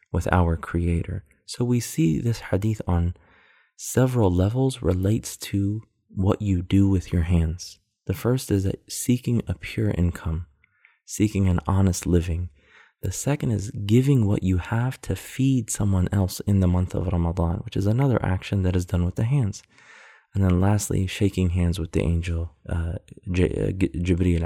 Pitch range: 85-105 Hz